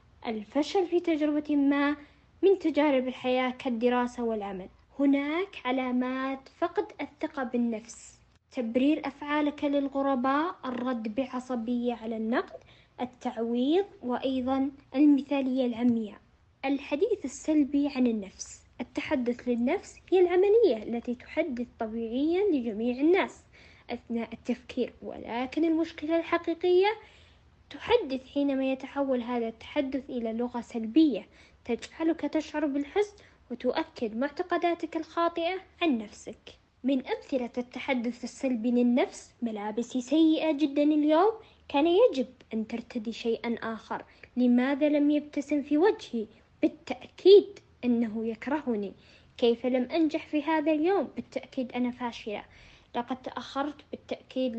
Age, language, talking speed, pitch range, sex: 20-39, Arabic, 105 wpm, 245-315 Hz, female